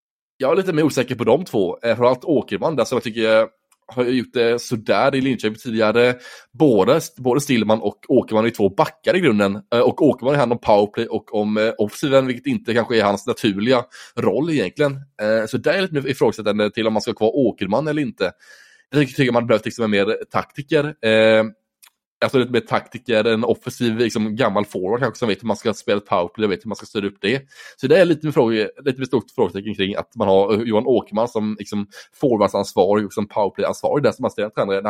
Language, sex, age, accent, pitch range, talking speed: Swedish, male, 20-39, Norwegian, 105-125 Hz, 205 wpm